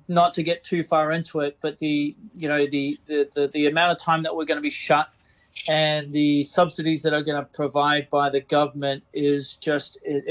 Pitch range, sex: 145-165 Hz, male